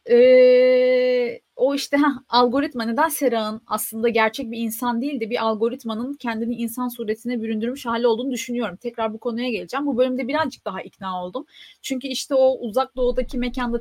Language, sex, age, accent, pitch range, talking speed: Turkish, female, 30-49, native, 225-280 Hz, 165 wpm